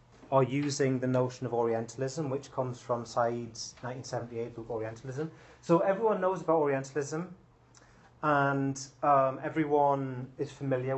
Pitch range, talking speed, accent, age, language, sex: 130-170 Hz, 125 wpm, British, 30-49, English, male